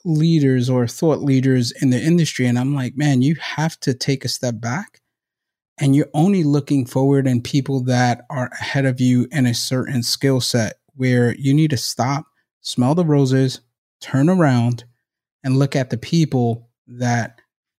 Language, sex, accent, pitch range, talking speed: English, male, American, 125-150 Hz, 170 wpm